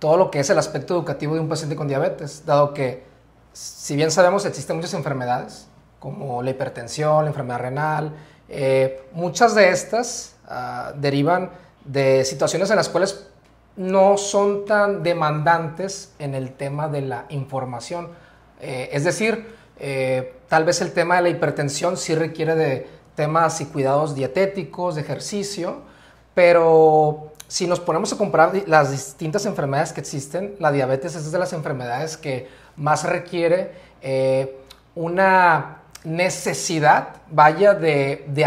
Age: 30-49